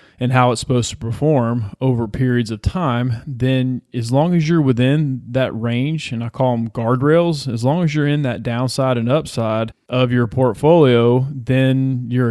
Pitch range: 115-130 Hz